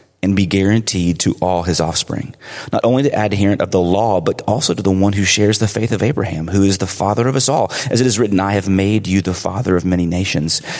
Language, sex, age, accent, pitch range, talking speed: English, male, 30-49, American, 95-115 Hz, 250 wpm